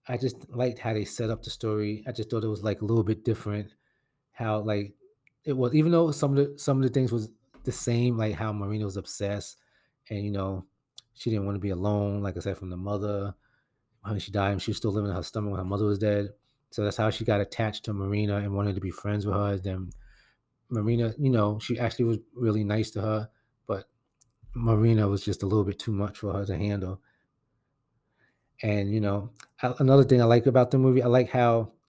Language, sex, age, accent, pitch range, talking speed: English, male, 30-49, American, 105-125 Hz, 230 wpm